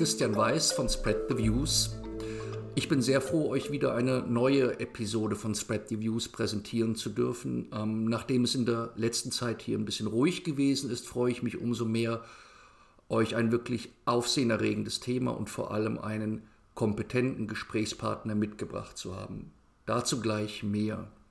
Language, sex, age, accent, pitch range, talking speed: German, male, 50-69, German, 110-125 Hz, 160 wpm